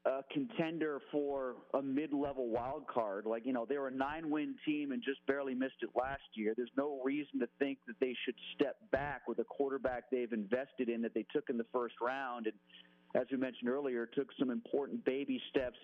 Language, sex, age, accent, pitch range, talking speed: English, male, 40-59, American, 120-150 Hz, 210 wpm